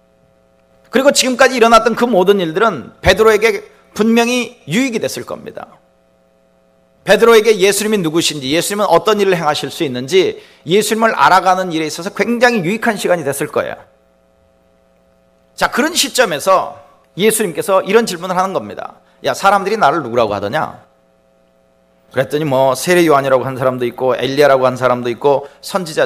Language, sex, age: Korean, male, 40-59